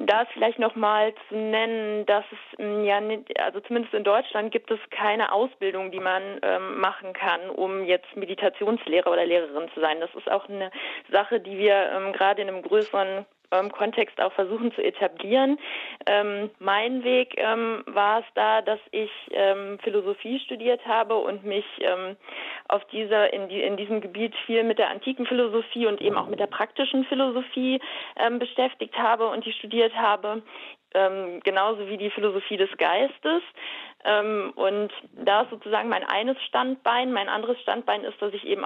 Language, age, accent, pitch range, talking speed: German, 20-39, German, 200-235 Hz, 170 wpm